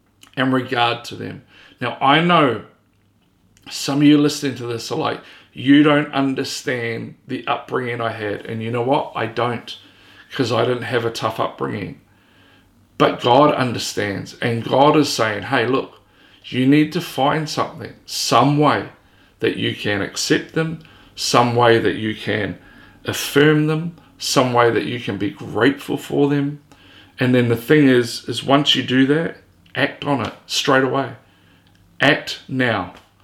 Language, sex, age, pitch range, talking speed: English, male, 40-59, 100-145 Hz, 160 wpm